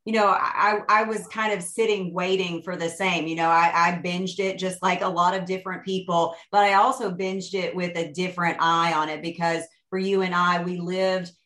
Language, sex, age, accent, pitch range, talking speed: English, female, 30-49, American, 165-190 Hz, 225 wpm